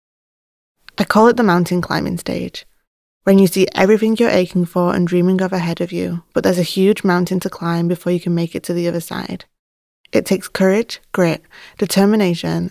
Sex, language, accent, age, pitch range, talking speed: female, English, British, 20-39, 175-195 Hz, 195 wpm